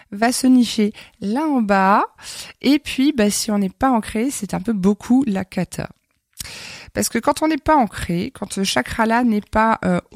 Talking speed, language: 195 wpm, French